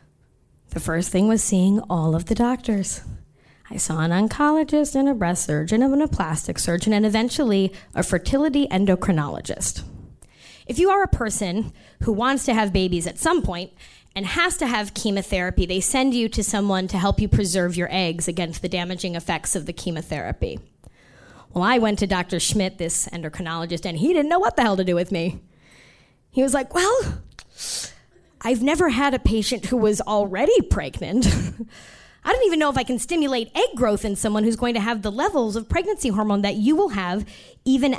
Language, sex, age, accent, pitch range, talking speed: English, female, 20-39, American, 185-265 Hz, 190 wpm